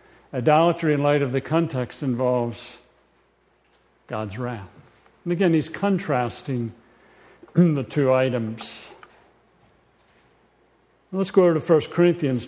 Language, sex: English, male